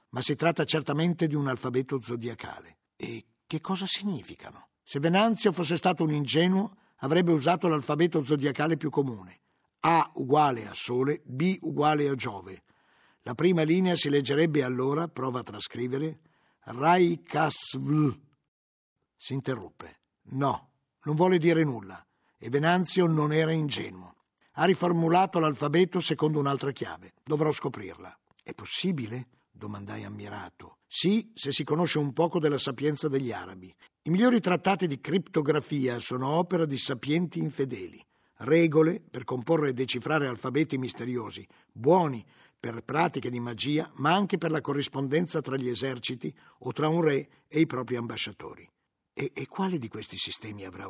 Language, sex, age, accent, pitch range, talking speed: Italian, male, 50-69, native, 125-170 Hz, 145 wpm